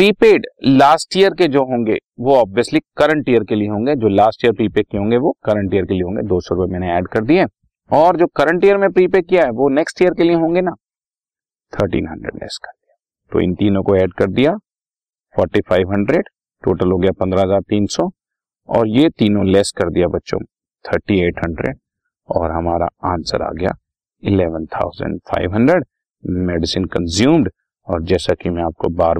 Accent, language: native, Hindi